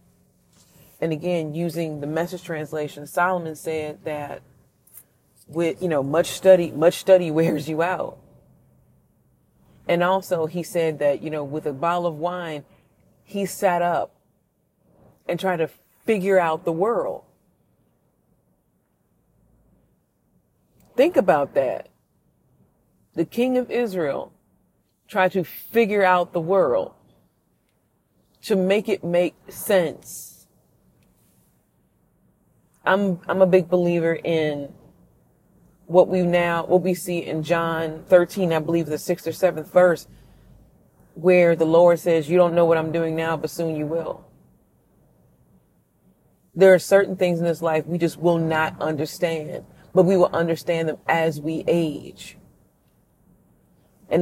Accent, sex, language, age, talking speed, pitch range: American, female, English, 30-49, 130 wpm, 155-180 Hz